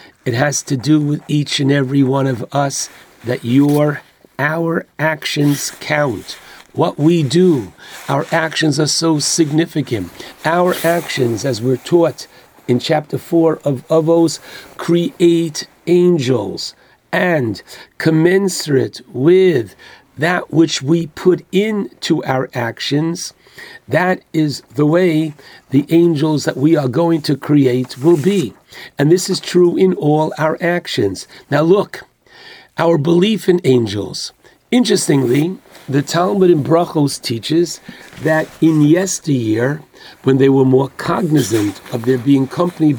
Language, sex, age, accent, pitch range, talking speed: English, male, 50-69, American, 140-175 Hz, 130 wpm